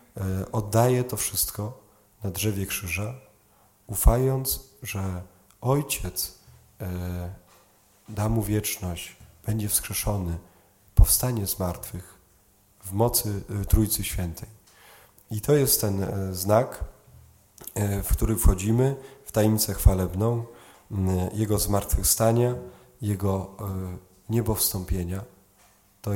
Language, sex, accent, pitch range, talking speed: Polish, male, native, 95-110 Hz, 85 wpm